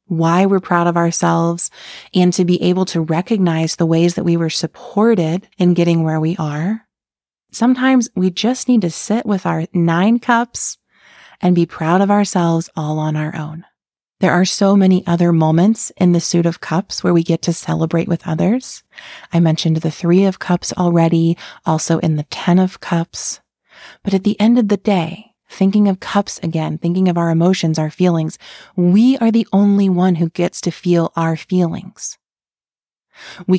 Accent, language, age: American, English, 30-49